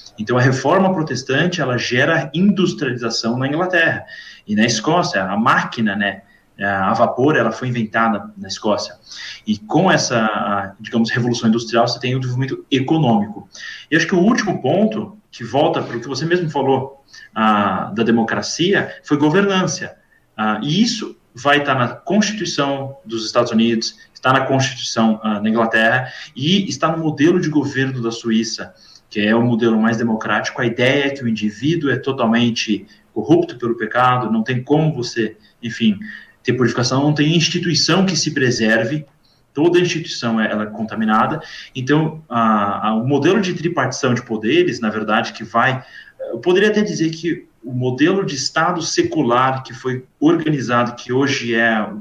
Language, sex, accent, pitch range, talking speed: Portuguese, male, Brazilian, 115-160 Hz, 160 wpm